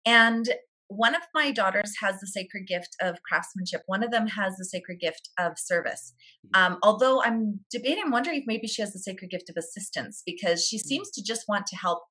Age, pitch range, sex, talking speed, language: 30-49, 190-255 Hz, female, 215 wpm, English